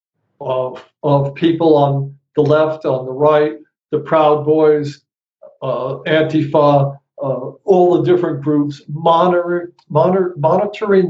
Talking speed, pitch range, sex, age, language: 110 wpm, 145-175 Hz, male, 60-79, English